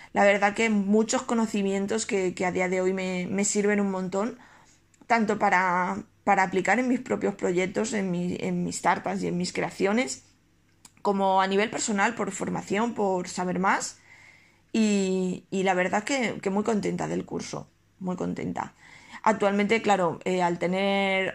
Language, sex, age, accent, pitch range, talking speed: Spanish, female, 20-39, Spanish, 185-215 Hz, 165 wpm